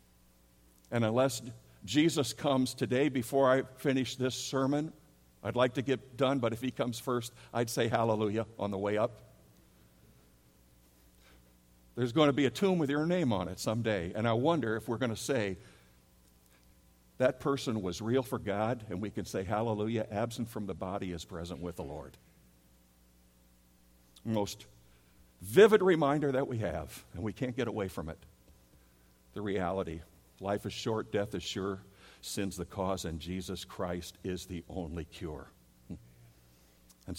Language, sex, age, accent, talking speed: English, male, 60-79, American, 160 wpm